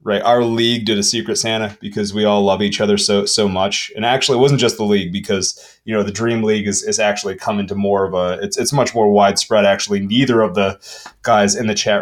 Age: 30-49